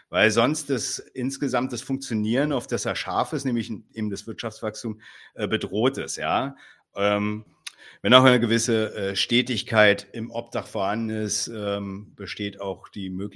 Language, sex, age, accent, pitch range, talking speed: German, male, 50-69, German, 90-110 Hz, 120 wpm